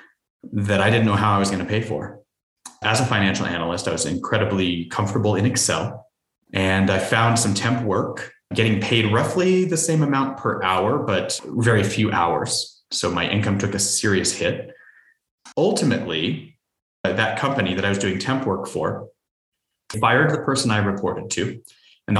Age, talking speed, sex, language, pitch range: 30-49, 170 wpm, male, English, 90-110 Hz